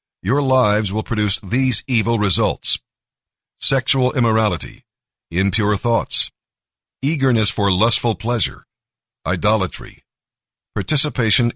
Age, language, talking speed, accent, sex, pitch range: 50-69, English, 90 wpm, American, male, 105-130 Hz